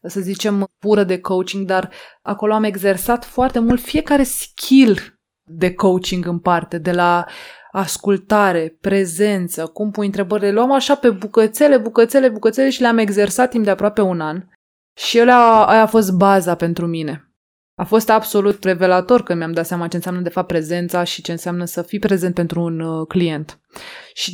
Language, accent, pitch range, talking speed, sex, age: Romanian, native, 175-220 Hz, 170 wpm, female, 20-39